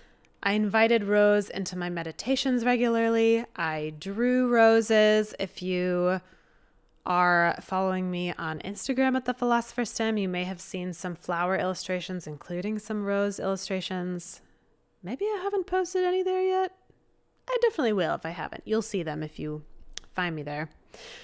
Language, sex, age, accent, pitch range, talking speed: English, female, 20-39, American, 180-235 Hz, 150 wpm